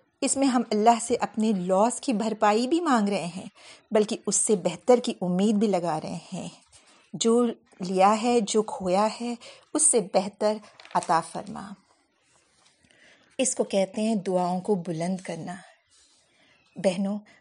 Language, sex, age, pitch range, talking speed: Urdu, female, 50-69, 200-245 Hz, 150 wpm